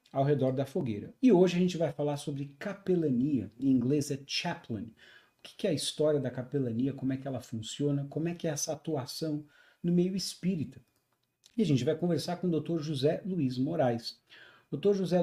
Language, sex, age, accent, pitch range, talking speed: English, male, 40-59, Brazilian, 130-170 Hz, 195 wpm